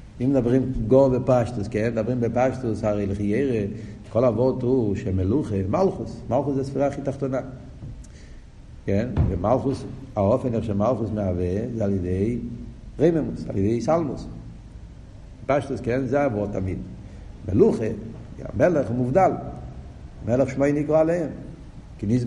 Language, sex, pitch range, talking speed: Hebrew, male, 105-145 Hz, 125 wpm